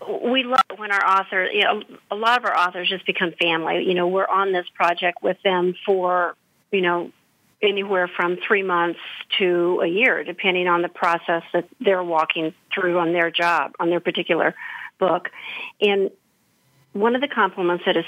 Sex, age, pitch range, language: female, 50-69, 175-200 Hz, English